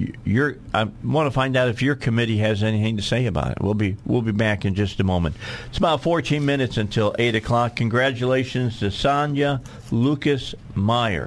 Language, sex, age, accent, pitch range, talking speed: English, male, 50-69, American, 100-125 Hz, 190 wpm